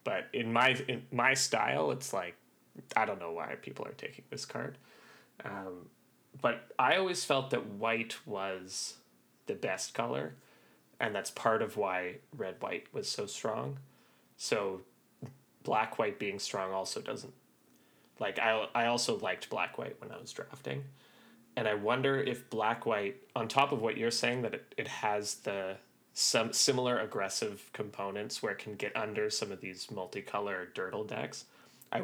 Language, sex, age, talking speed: English, male, 20-39, 160 wpm